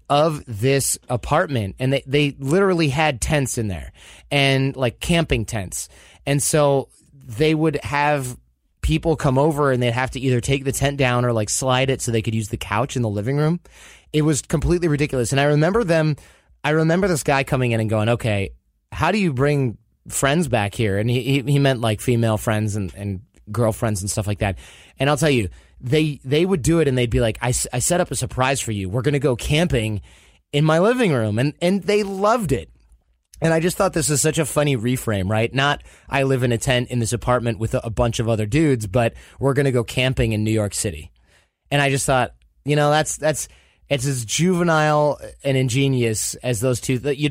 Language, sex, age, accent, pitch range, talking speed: English, male, 30-49, American, 110-150 Hz, 220 wpm